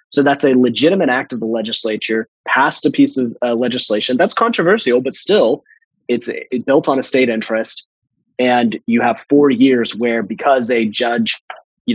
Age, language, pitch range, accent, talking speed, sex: 30-49, English, 105-125 Hz, American, 175 wpm, male